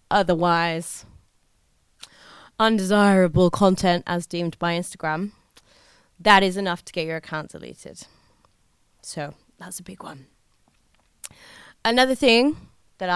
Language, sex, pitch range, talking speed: English, female, 175-235 Hz, 105 wpm